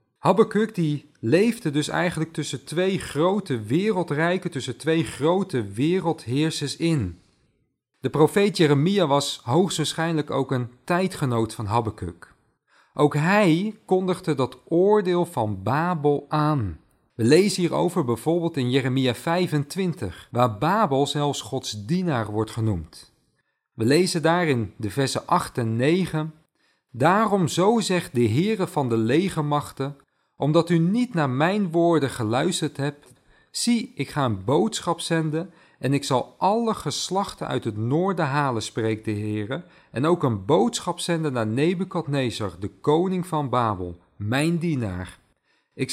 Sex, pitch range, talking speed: male, 120-170 Hz, 135 wpm